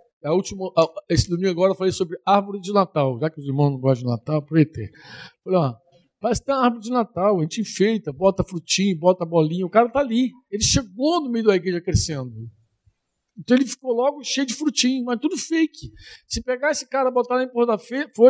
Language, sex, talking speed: Portuguese, male, 215 wpm